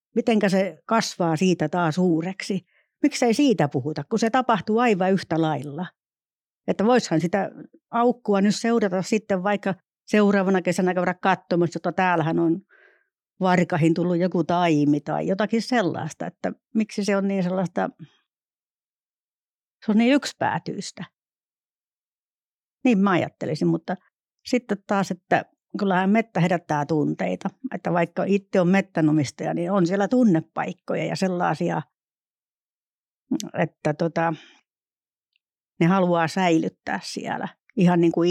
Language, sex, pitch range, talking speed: Finnish, female, 165-205 Hz, 120 wpm